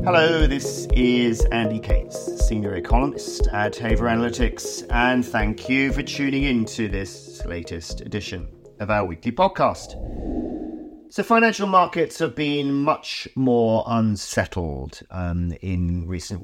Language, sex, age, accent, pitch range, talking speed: English, male, 40-59, British, 90-135 Hz, 130 wpm